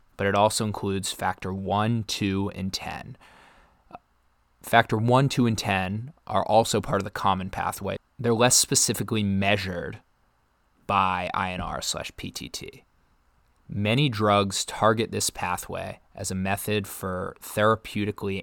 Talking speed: 125 wpm